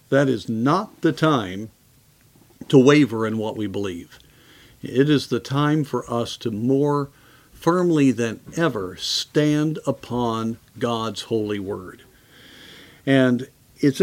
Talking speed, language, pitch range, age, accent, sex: 125 wpm, English, 120-155 Hz, 50-69, American, male